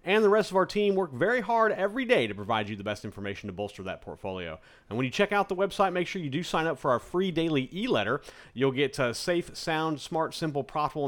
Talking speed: 255 wpm